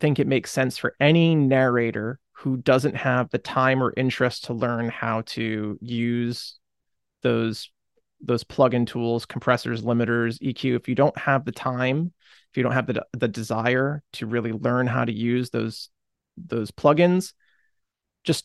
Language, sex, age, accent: English, male, 30-49, American